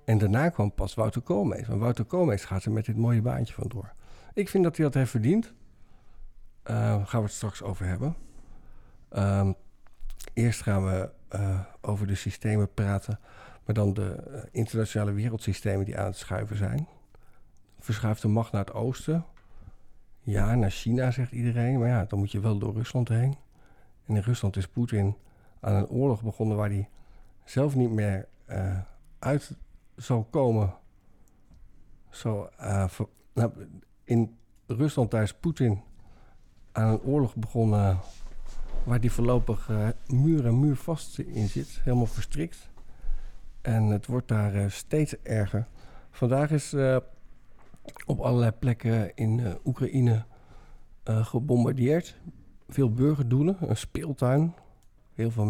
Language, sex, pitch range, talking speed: Dutch, male, 100-125 Hz, 145 wpm